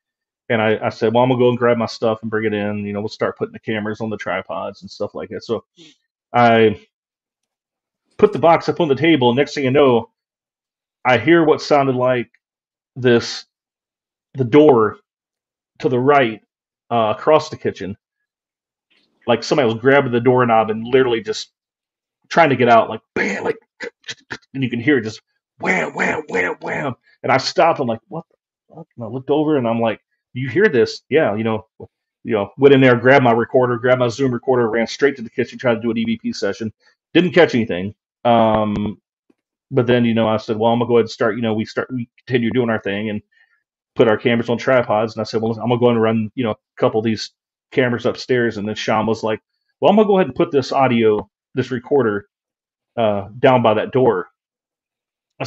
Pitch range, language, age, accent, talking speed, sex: 110-140 Hz, English, 40-59, American, 215 wpm, male